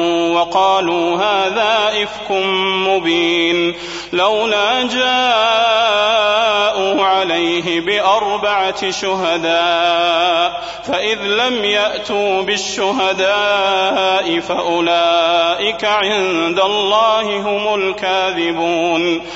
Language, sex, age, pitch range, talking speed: Arabic, male, 30-49, 175-220 Hz, 55 wpm